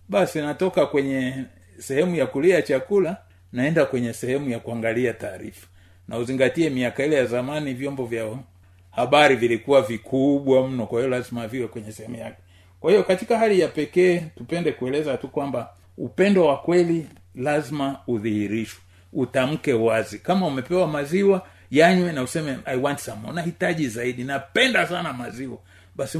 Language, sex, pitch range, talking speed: Swahili, male, 115-175 Hz, 155 wpm